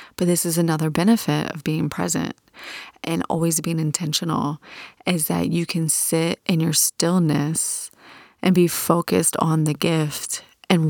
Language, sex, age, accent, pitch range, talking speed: English, female, 30-49, American, 155-190 Hz, 150 wpm